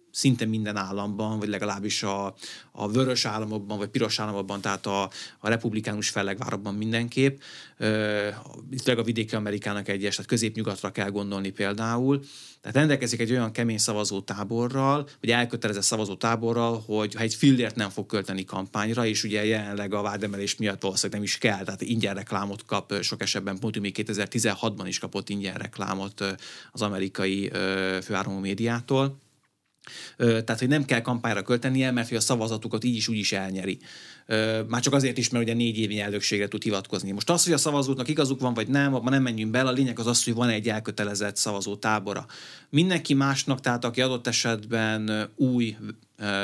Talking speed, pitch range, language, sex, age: 165 wpm, 100-120 Hz, Hungarian, male, 30-49